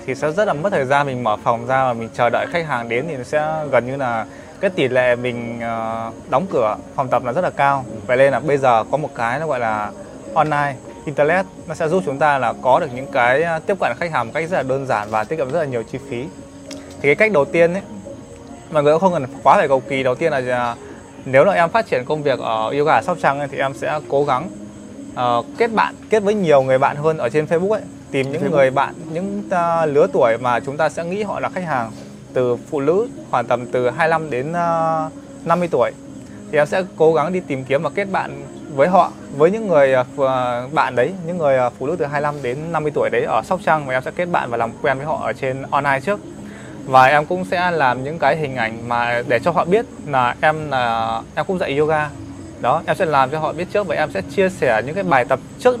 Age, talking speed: 20-39, 255 wpm